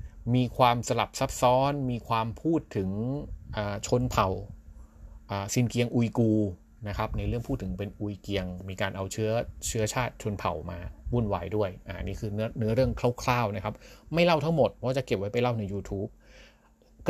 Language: Thai